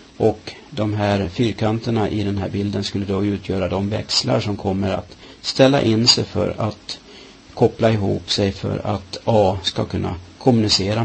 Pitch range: 100-125 Hz